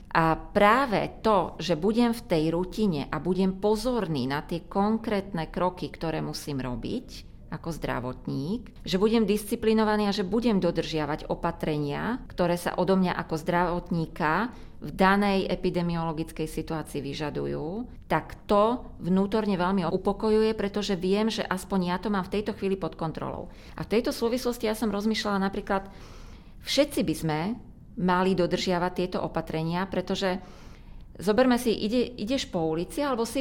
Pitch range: 165-215 Hz